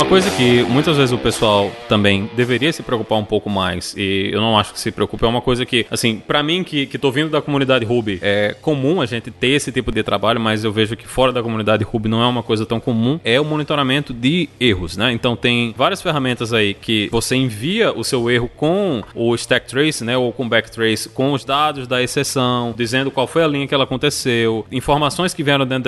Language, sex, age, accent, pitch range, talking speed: Portuguese, male, 20-39, Brazilian, 115-150 Hz, 235 wpm